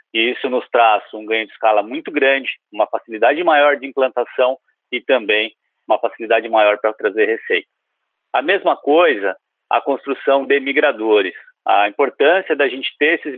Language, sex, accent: Portuguese, male, Brazilian